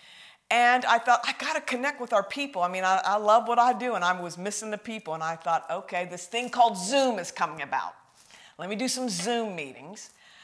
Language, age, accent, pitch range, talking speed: English, 50-69, American, 180-240 Hz, 235 wpm